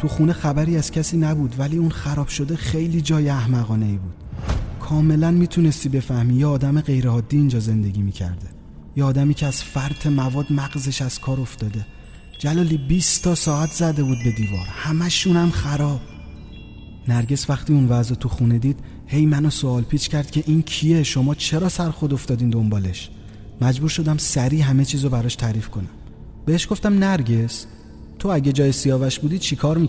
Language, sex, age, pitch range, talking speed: Persian, male, 30-49, 115-150 Hz, 165 wpm